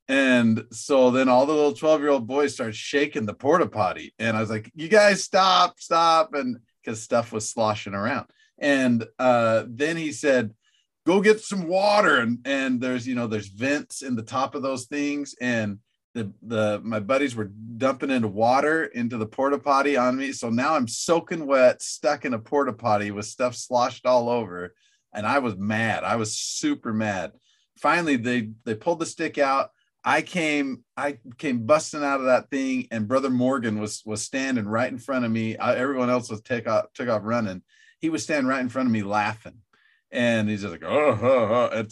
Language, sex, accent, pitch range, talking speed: English, male, American, 110-140 Hz, 200 wpm